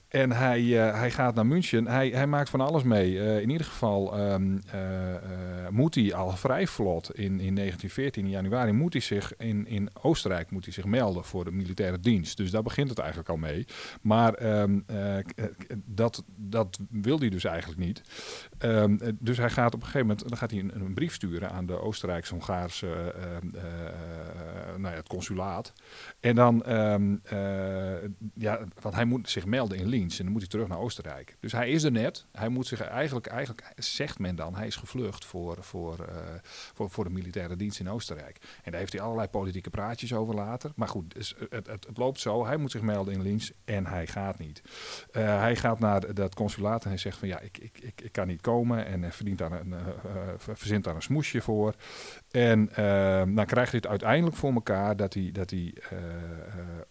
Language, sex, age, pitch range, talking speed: Dutch, male, 40-59, 95-115 Hz, 215 wpm